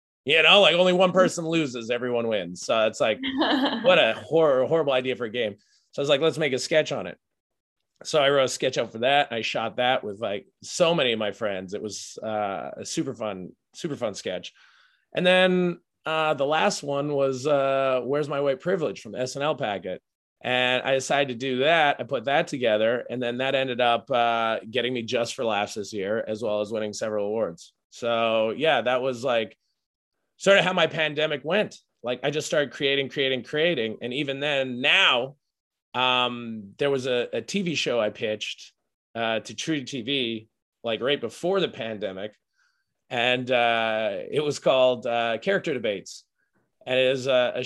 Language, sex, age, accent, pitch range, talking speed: English, male, 30-49, American, 115-150 Hz, 195 wpm